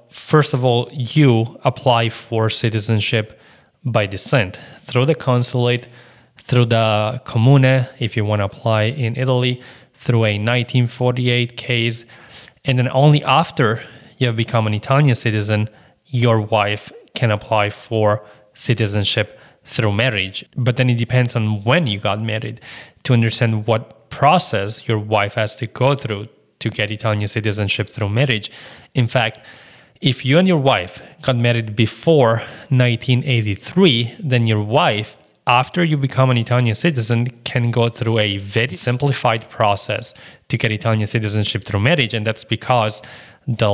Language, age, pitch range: English, 20-39, 110-130 Hz